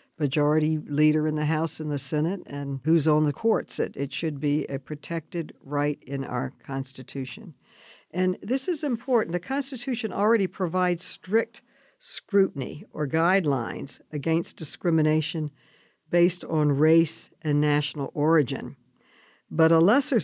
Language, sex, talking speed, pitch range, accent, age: English, female, 135 wpm, 150-190 Hz, American, 60-79